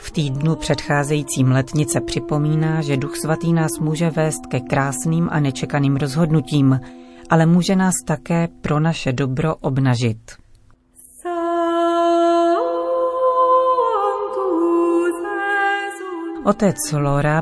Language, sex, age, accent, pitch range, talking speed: Czech, female, 40-59, native, 140-170 Hz, 90 wpm